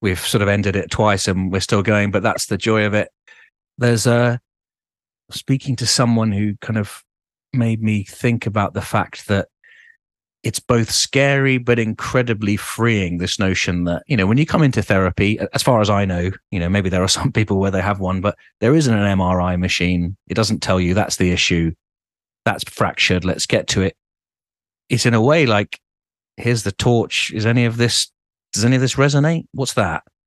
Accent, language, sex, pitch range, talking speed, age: British, English, male, 90-115 Hz, 200 wpm, 30-49